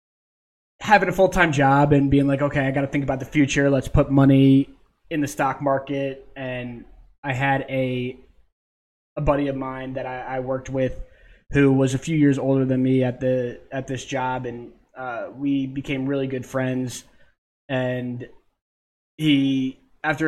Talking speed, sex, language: 170 wpm, male, English